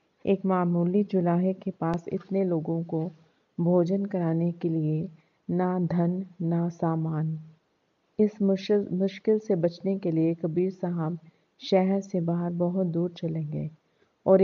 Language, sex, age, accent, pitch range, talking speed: Hindi, female, 40-59, native, 165-195 Hz, 130 wpm